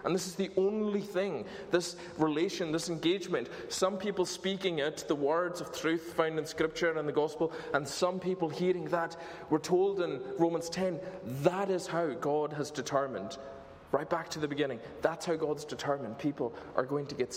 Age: 20-39